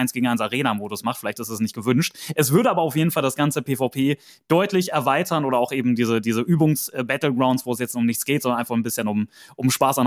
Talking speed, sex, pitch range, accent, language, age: 245 wpm, male, 120-150 Hz, German, German, 20-39